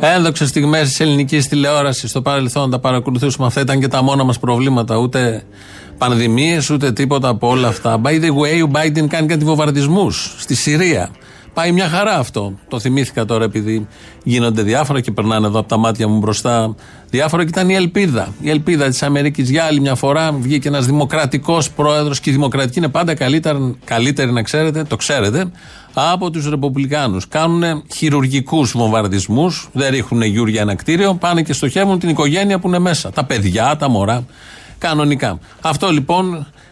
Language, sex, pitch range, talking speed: Greek, male, 120-155 Hz, 170 wpm